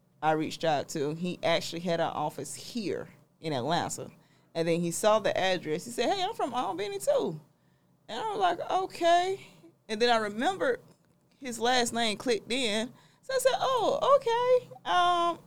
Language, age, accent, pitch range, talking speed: English, 20-39, American, 165-215 Hz, 175 wpm